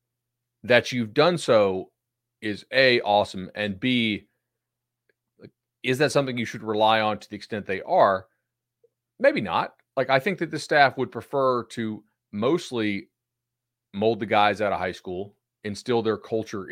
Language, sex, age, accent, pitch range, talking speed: English, male, 40-59, American, 110-125 Hz, 155 wpm